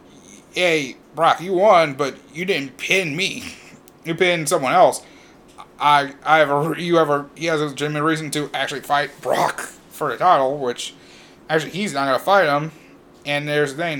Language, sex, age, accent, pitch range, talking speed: English, male, 30-49, American, 125-150 Hz, 185 wpm